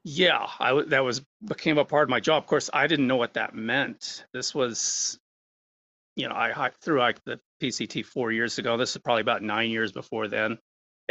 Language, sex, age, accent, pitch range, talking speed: English, male, 30-49, American, 110-130 Hz, 220 wpm